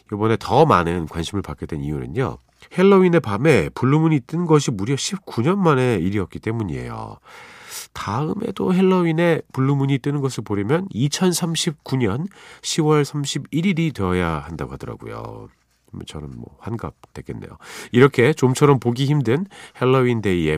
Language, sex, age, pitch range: Korean, male, 40-59, 95-145 Hz